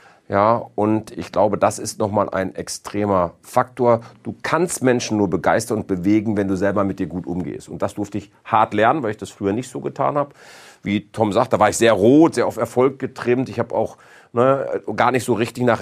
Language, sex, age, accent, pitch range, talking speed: German, male, 40-59, German, 105-130 Hz, 220 wpm